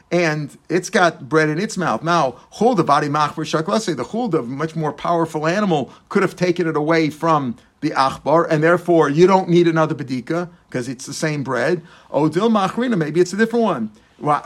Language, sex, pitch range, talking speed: English, male, 160-185 Hz, 170 wpm